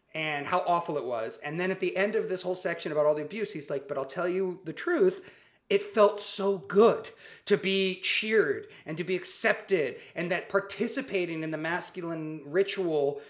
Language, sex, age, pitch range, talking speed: English, male, 30-49, 160-215 Hz, 200 wpm